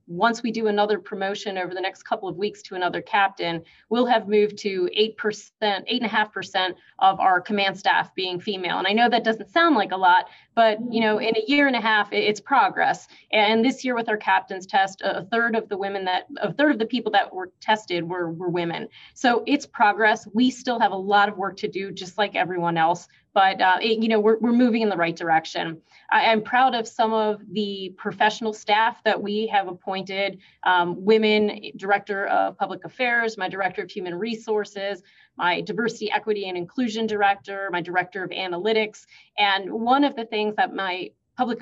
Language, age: English, 30-49